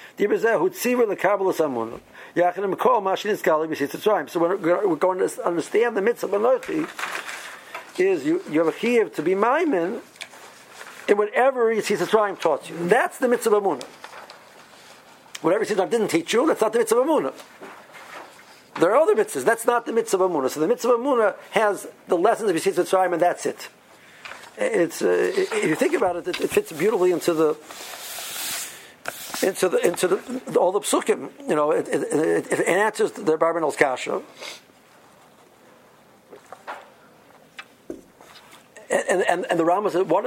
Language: English